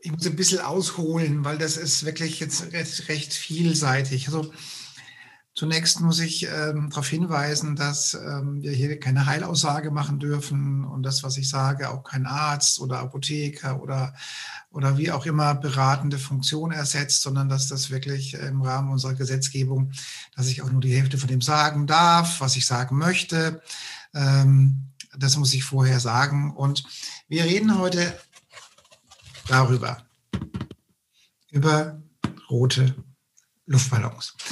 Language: German